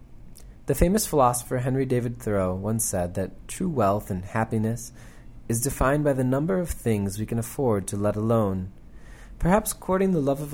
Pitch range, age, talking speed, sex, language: 100-135 Hz, 30-49, 175 wpm, male, English